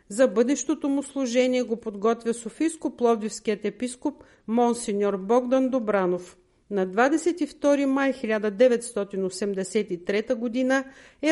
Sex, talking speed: female, 95 wpm